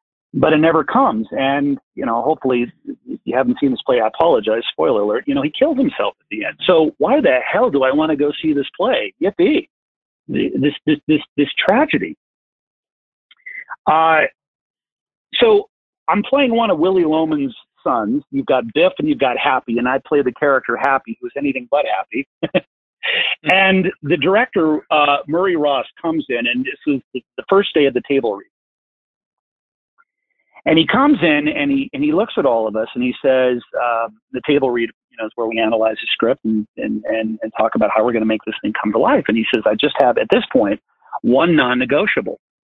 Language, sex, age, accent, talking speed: English, male, 50-69, American, 200 wpm